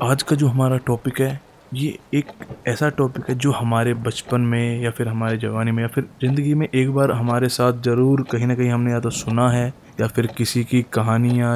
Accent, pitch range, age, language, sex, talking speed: native, 115-130 Hz, 20-39, Hindi, male, 220 wpm